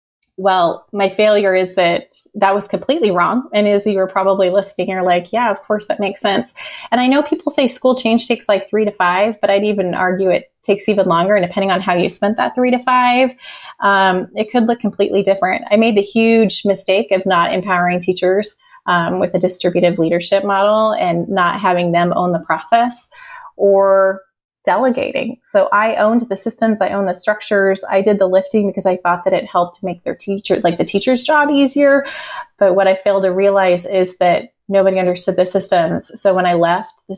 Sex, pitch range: female, 185-215 Hz